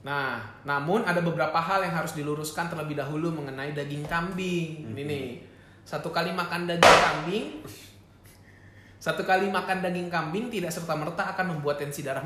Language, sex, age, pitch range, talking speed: Indonesian, male, 20-39, 120-155 Hz, 155 wpm